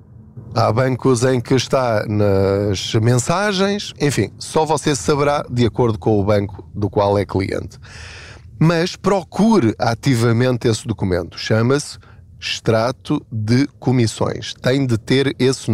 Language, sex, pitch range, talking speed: Portuguese, male, 110-135 Hz, 125 wpm